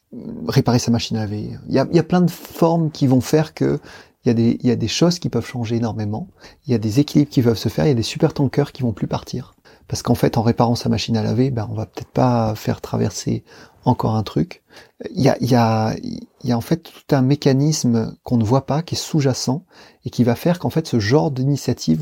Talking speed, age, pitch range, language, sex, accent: 270 wpm, 30-49, 110-140 Hz, French, male, French